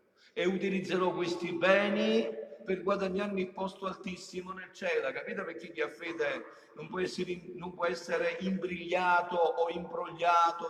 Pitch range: 180-235 Hz